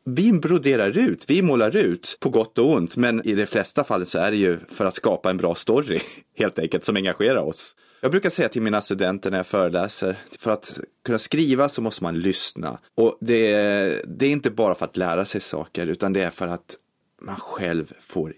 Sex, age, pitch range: male, 30-49, 100-165 Hz